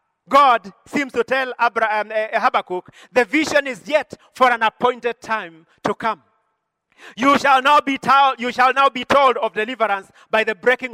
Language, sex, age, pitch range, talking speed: English, male, 40-59, 220-275 Hz, 175 wpm